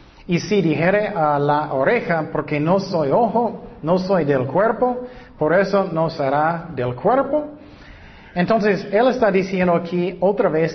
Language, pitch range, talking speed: Spanish, 145-185 Hz, 150 wpm